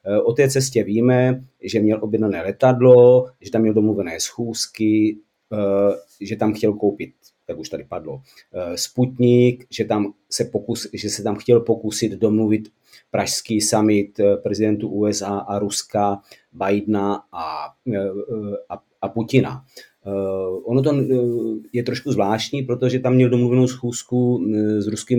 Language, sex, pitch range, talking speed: Czech, male, 105-120 Hz, 130 wpm